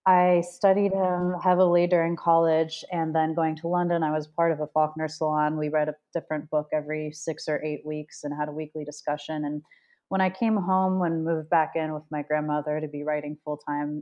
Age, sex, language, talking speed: 30-49, female, English, 215 wpm